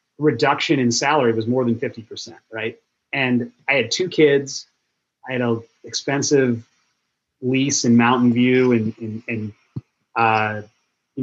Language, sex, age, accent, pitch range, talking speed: English, male, 30-49, American, 115-135 Hz, 135 wpm